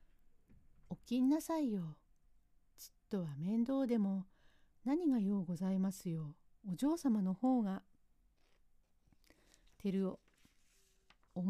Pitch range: 170-245 Hz